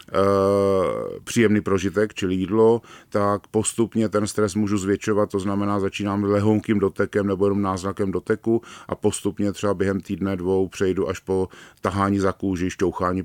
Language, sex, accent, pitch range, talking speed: Czech, male, native, 90-100 Hz, 150 wpm